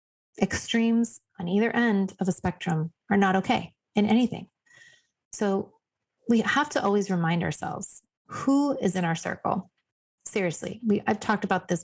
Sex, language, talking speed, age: female, English, 150 wpm, 30-49